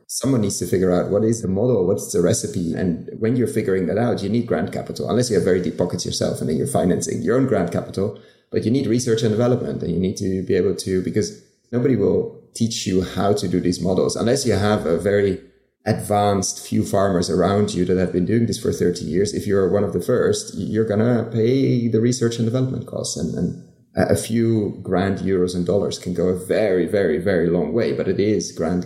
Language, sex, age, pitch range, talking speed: English, male, 30-49, 95-115 Hz, 235 wpm